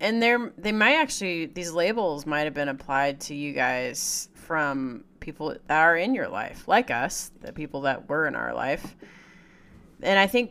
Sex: female